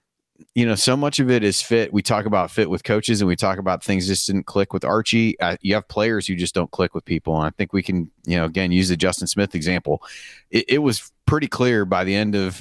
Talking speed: 260 wpm